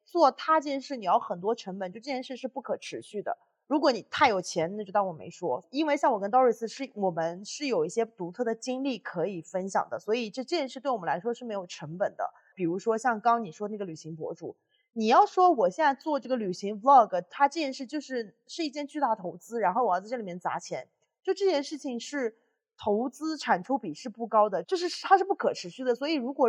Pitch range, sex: 205-285 Hz, female